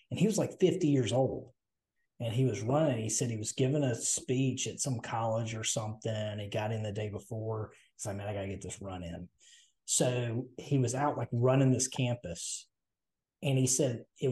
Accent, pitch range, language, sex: American, 110-140 Hz, English, male